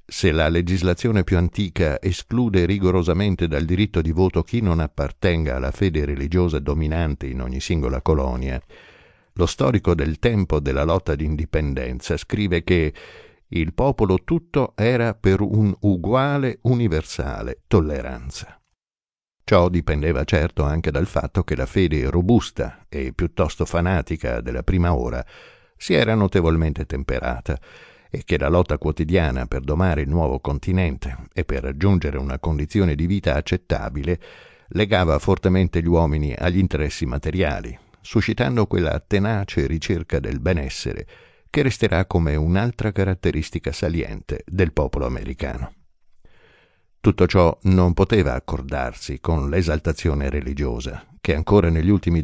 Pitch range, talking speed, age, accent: 75-95 Hz, 130 wpm, 60-79, native